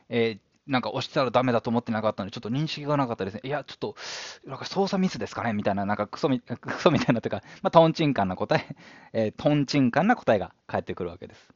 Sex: male